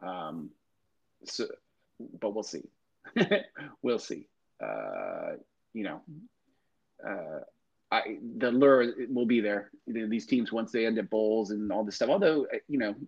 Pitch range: 105-150 Hz